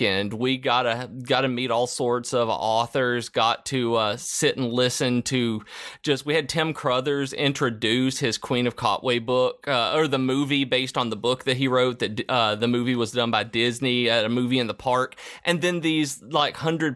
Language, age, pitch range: English, 30-49, 115-135 Hz